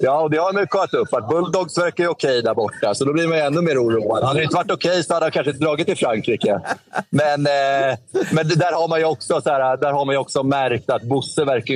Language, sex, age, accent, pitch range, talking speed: Swedish, male, 30-49, native, 115-145 Hz, 235 wpm